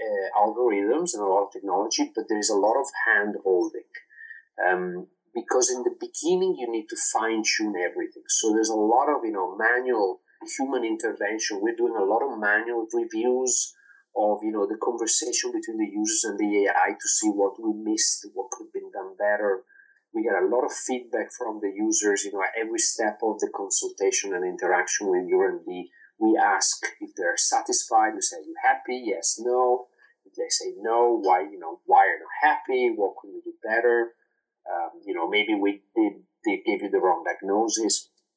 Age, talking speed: 30-49, 200 wpm